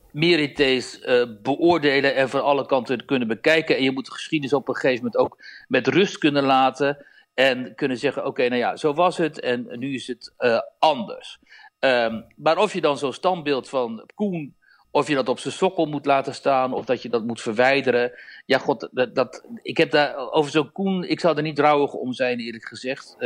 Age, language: 60-79, Dutch